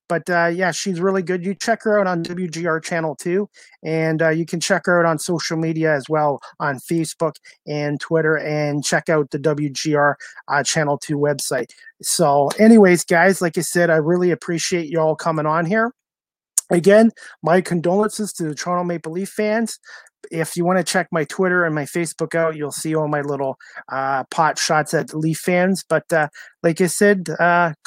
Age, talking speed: 30-49, 195 wpm